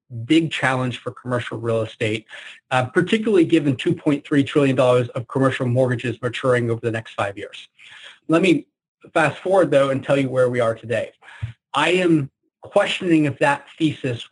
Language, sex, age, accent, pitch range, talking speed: English, male, 30-49, American, 125-160 Hz, 160 wpm